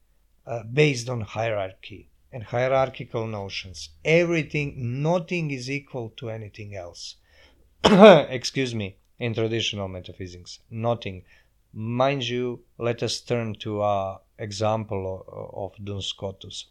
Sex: male